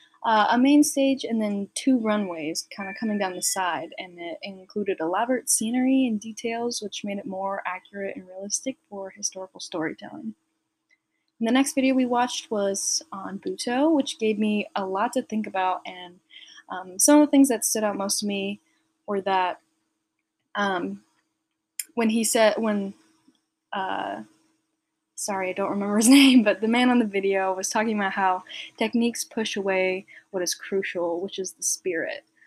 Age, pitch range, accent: 20-39, 190-235 Hz, American